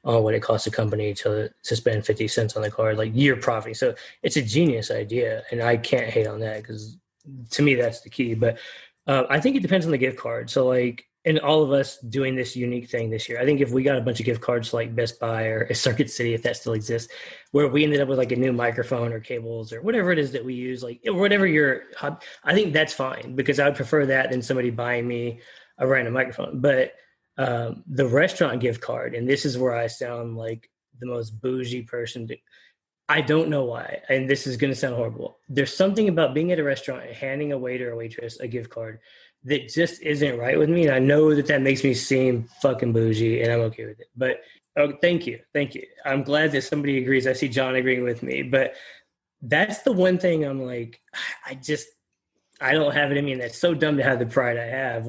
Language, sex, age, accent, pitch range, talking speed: English, male, 20-39, American, 120-145 Hz, 245 wpm